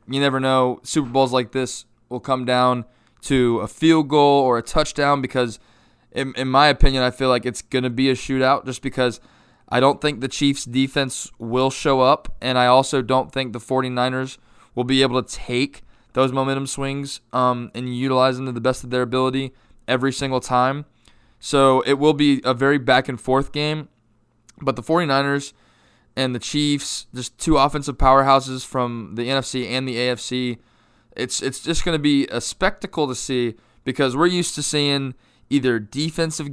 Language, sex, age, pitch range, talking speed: English, male, 20-39, 120-140 Hz, 180 wpm